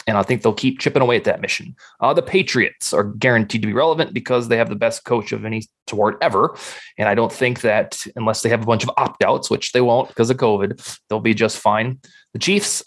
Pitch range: 110-130 Hz